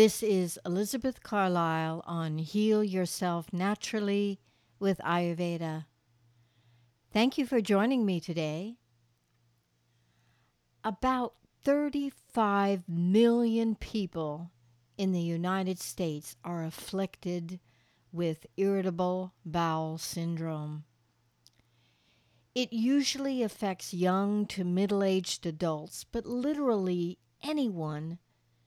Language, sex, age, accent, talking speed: English, female, 60-79, American, 85 wpm